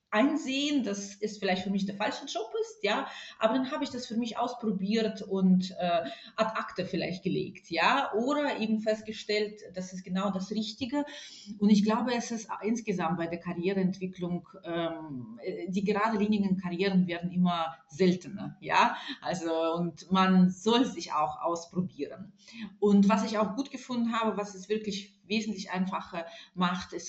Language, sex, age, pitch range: German, female, 30-49, 175-215 Hz